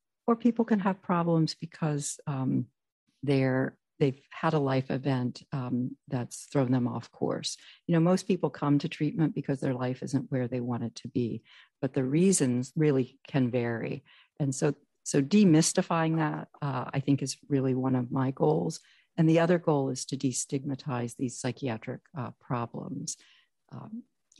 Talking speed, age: 165 wpm, 50-69